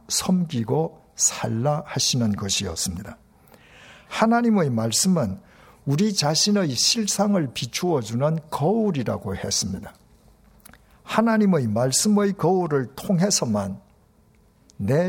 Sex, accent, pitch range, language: male, native, 120-195 Hz, Korean